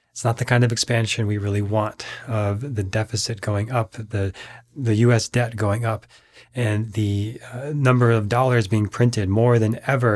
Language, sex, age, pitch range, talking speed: English, male, 30-49, 105-125 Hz, 185 wpm